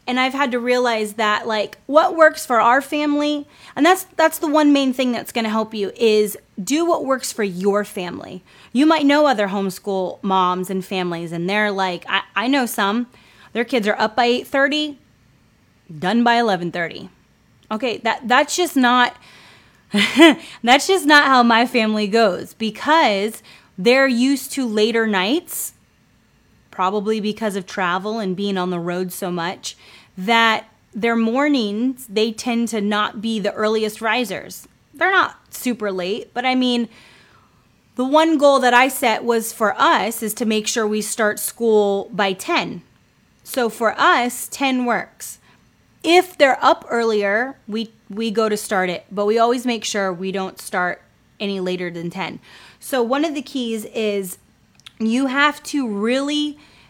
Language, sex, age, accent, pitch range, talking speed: English, female, 20-39, American, 200-265 Hz, 165 wpm